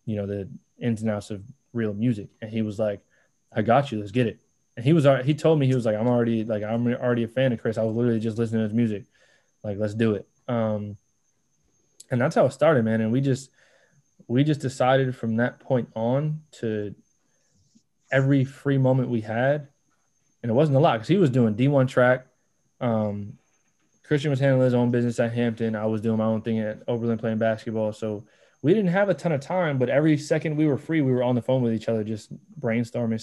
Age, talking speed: 20-39, 230 wpm